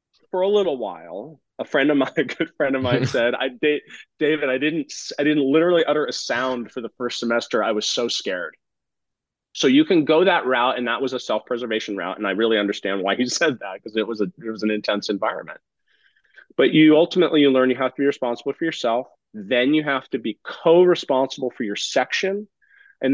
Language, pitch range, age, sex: English, 110-145 Hz, 30-49, male